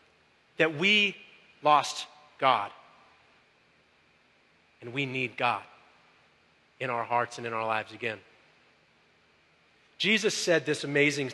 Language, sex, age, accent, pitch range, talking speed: English, male, 30-49, American, 135-190 Hz, 105 wpm